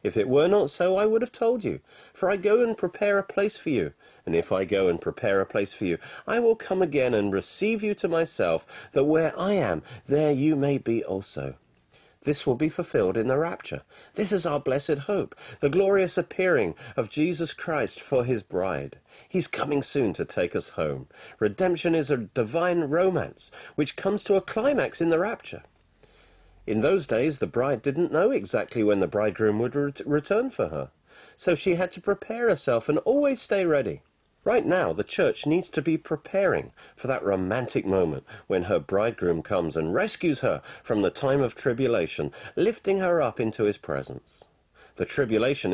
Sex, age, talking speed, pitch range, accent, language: male, 40-59, 190 wpm, 120-195 Hz, British, English